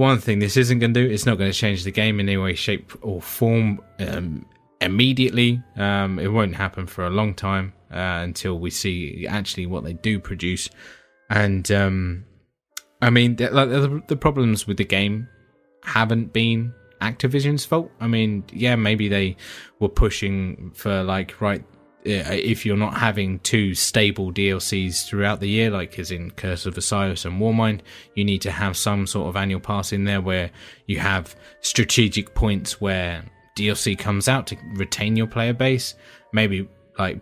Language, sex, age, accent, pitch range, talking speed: English, male, 20-39, British, 95-110 Hz, 175 wpm